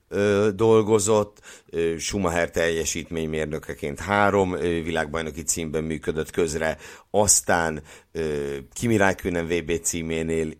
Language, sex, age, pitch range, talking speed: Hungarian, male, 60-79, 75-95 Hz, 70 wpm